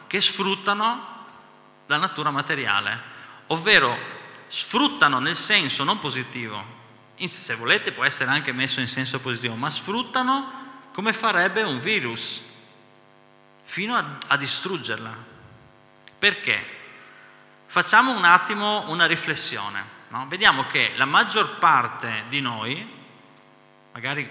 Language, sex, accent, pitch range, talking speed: Italian, male, native, 115-140 Hz, 110 wpm